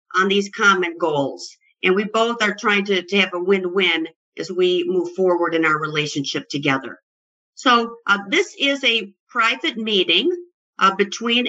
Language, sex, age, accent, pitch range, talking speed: English, female, 50-69, American, 185-240 Hz, 160 wpm